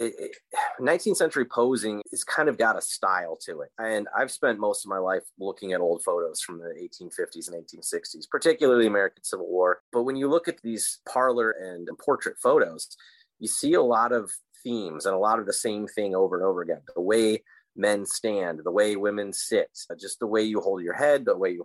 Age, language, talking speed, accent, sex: 30-49, English, 215 wpm, American, male